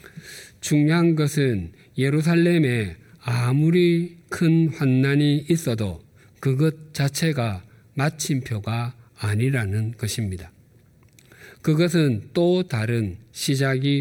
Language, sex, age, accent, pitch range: Korean, male, 50-69, native, 115-150 Hz